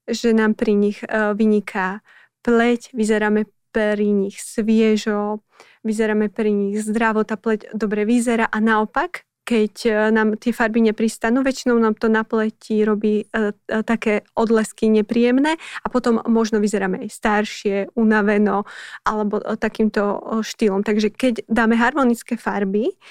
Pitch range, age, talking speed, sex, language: 215-235 Hz, 20-39, 125 wpm, female, Slovak